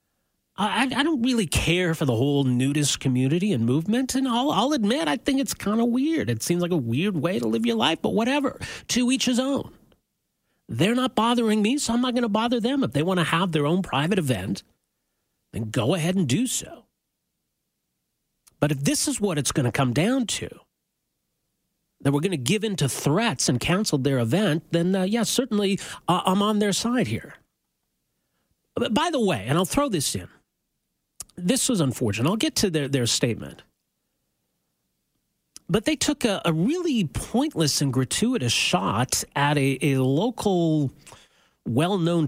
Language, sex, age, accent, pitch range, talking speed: English, male, 40-59, American, 135-225 Hz, 185 wpm